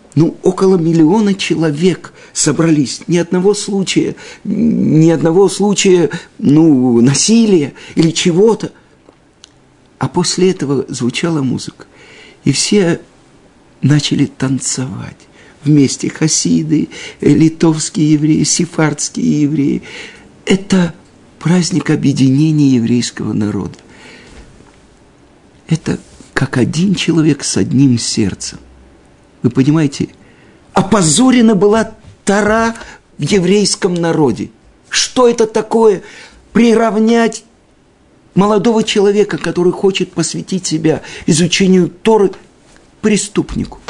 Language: Russian